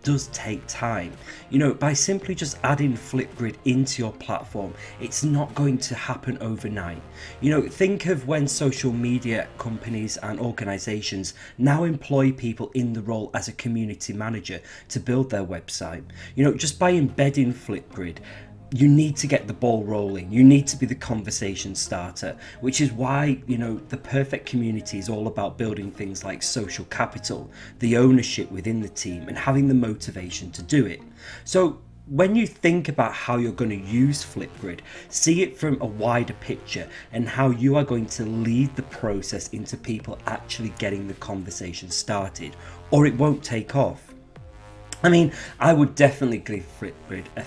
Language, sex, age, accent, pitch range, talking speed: English, male, 30-49, British, 105-135 Hz, 175 wpm